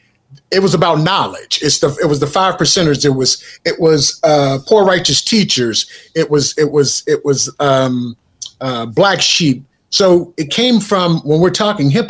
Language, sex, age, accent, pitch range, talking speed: English, male, 30-49, American, 145-200 Hz, 185 wpm